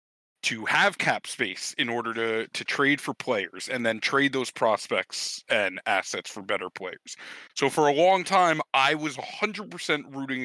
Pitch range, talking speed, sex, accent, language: 120-165 Hz, 170 wpm, male, American, English